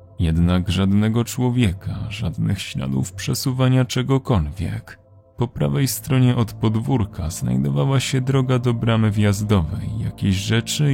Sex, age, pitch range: male, 30-49, 100-125 Hz